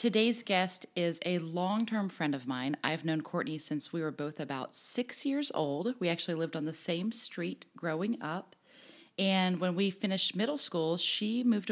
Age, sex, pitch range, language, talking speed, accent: 30-49, female, 160-225 Hz, English, 185 wpm, American